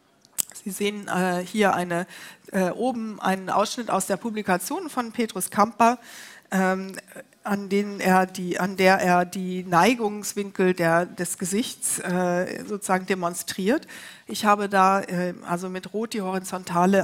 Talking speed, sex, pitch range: 130 wpm, female, 180-230 Hz